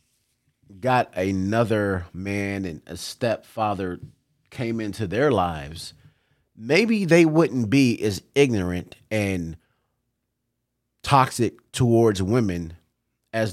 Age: 30-49